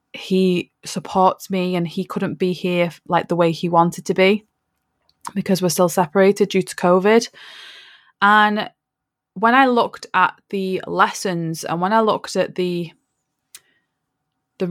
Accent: British